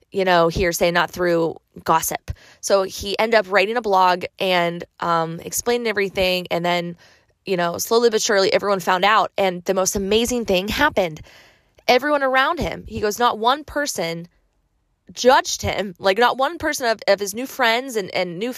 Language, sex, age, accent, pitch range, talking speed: English, female, 20-39, American, 180-225 Hz, 180 wpm